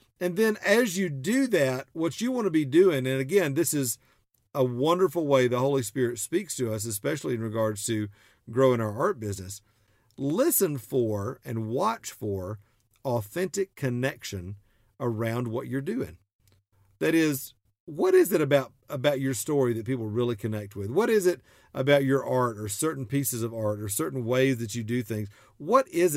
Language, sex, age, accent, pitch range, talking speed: English, male, 50-69, American, 115-150 Hz, 180 wpm